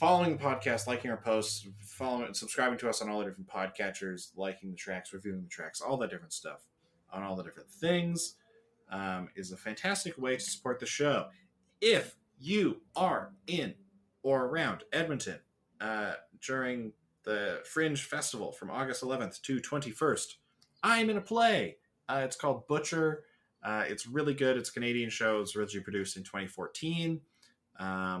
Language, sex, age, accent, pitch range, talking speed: English, male, 20-39, American, 95-135 Hz, 165 wpm